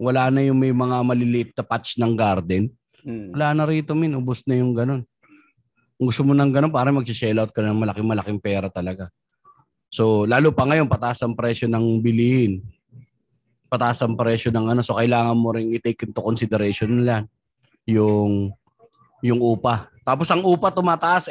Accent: native